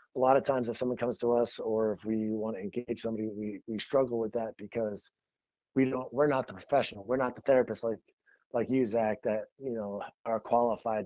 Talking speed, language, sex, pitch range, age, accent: 220 wpm, English, male, 105-125 Hz, 30-49, American